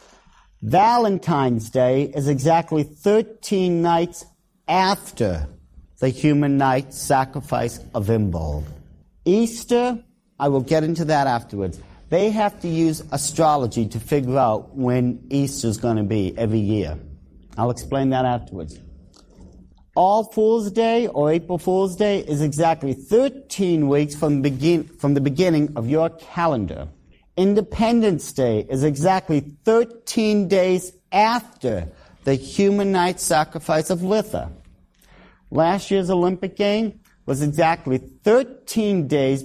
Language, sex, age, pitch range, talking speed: English, male, 50-69, 125-185 Hz, 125 wpm